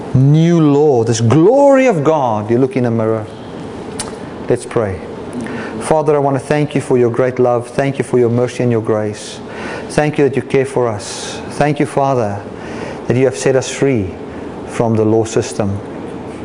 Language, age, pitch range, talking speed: English, 40-59, 115-150 Hz, 185 wpm